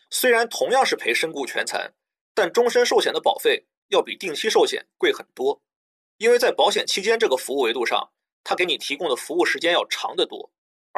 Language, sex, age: Chinese, male, 30-49